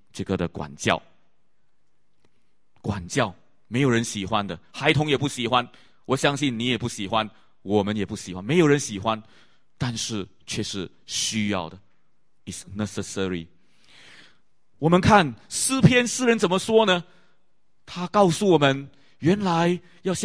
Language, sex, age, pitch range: English, male, 30-49, 115-180 Hz